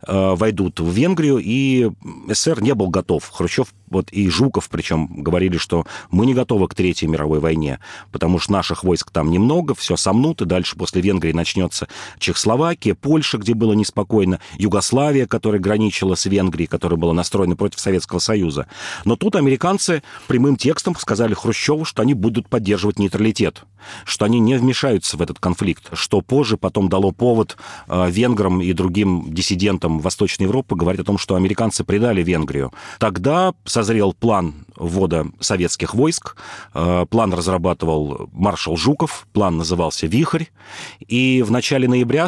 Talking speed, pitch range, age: 150 wpm, 90-125 Hz, 40-59